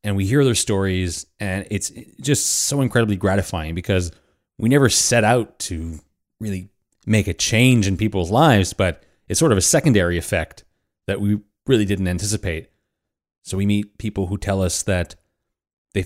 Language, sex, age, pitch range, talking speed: English, male, 30-49, 85-110 Hz, 170 wpm